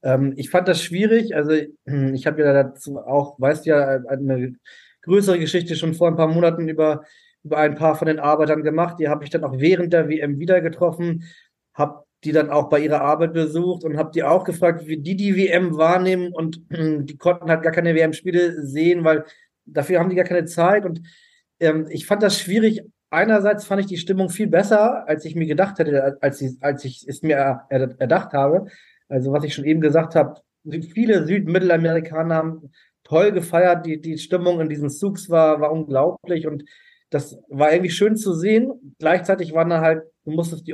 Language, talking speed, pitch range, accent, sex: German, 195 wpm, 150-180 Hz, German, male